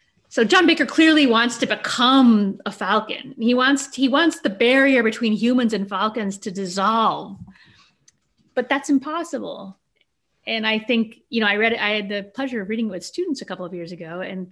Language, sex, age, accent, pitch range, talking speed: English, female, 30-49, American, 210-280 Hz, 195 wpm